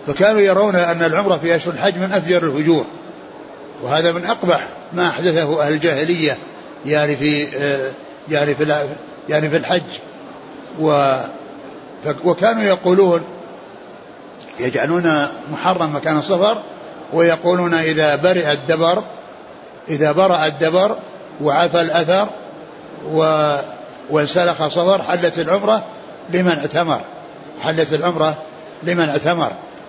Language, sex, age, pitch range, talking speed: Arabic, male, 60-79, 160-190 Hz, 95 wpm